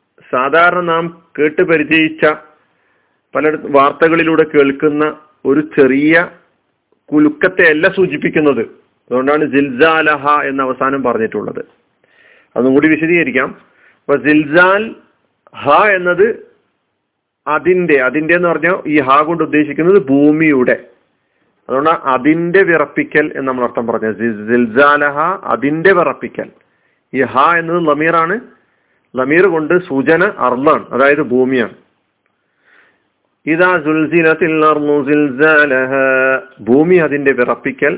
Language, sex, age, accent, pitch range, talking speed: Malayalam, male, 40-59, native, 140-175 Hz, 85 wpm